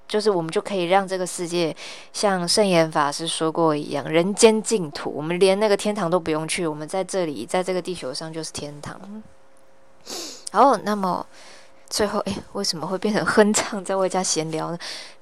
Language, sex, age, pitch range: Chinese, female, 20-39, 165-215 Hz